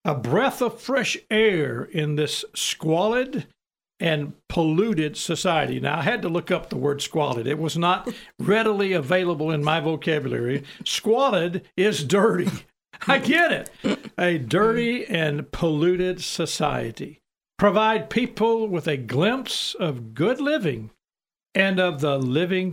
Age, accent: 60-79, American